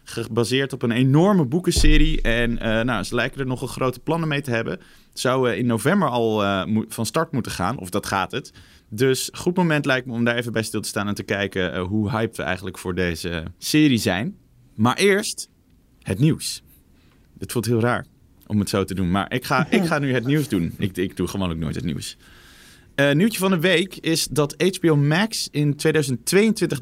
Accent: Dutch